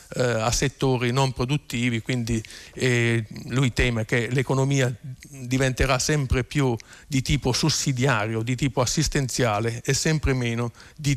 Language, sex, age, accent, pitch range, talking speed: Italian, male, 50-69, native, 115-135 Hz, 125 wpm